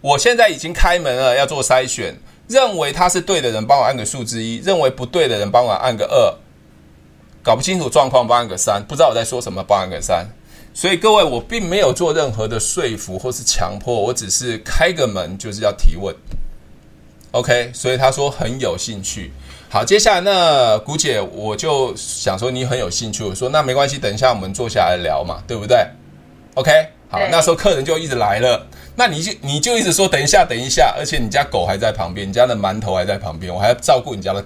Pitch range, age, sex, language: 105-155 Hz, 20-39, male, Chinese